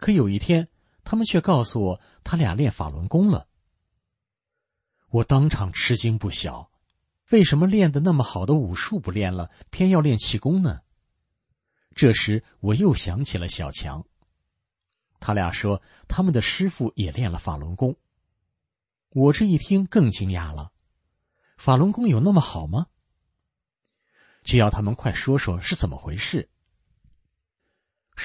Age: 50-69